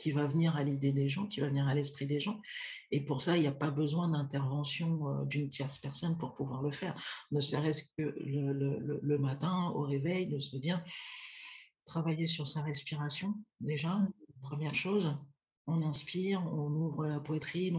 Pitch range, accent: 140-165 Hz, French